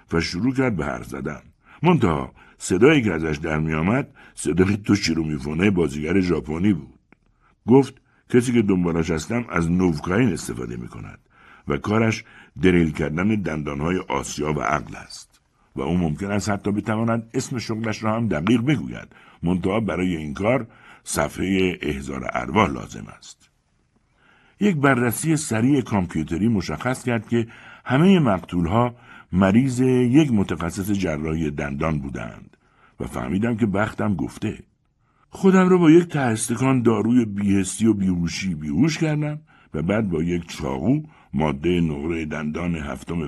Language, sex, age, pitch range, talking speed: Persian, male, 60-79, 80-130 Hz, 135 wpm